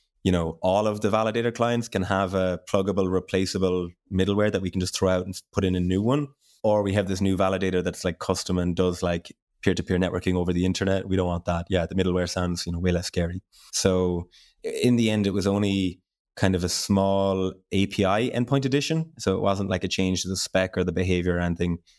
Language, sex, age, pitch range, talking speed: English, male, 20-39, 90-100 Hz, 225 wpm